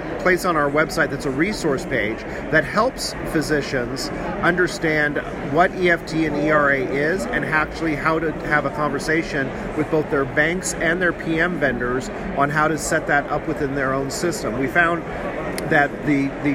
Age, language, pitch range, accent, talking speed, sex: 40-59, English, 145-170 Hz, American, 170 wpm, male